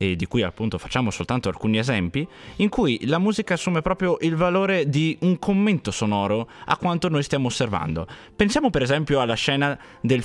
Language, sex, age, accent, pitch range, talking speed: Italian, male, 20-39, native, 105-155 Hz, 180 wpm